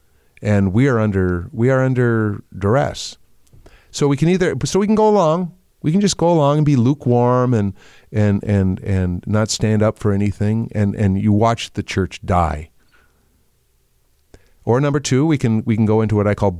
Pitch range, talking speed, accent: 95-120 Hz, 190 wpm, American